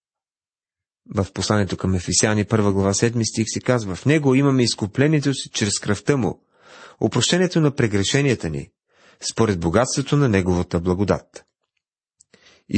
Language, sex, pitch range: Bulgarian, male, 100-130 Hz